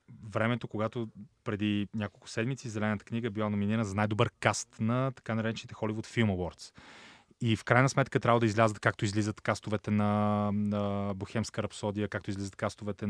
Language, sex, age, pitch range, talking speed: Bulgarian, male, 20-39, 100-125 Hz, 155 wpm